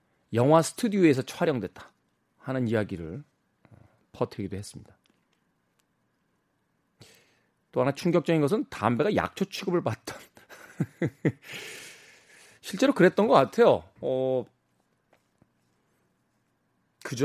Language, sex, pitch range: Korean, male, 110-165 Hz